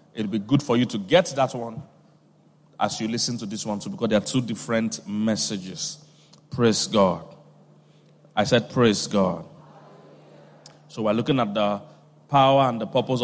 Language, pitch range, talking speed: English, 120-160 Hz, 170 wpm